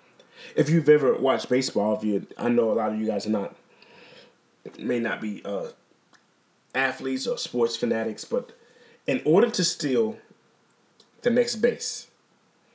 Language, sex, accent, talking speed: English, male, American, 150 wpm